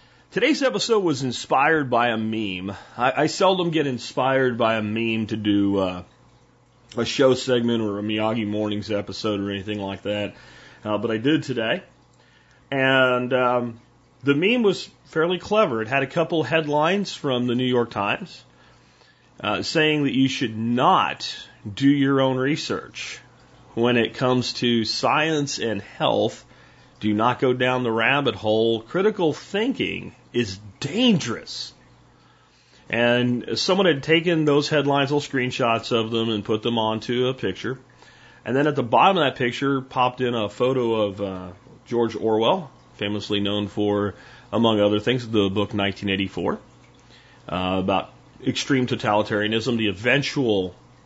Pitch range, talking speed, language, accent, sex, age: 105-135 Hz, 150 wpm, English, American, male, 40-59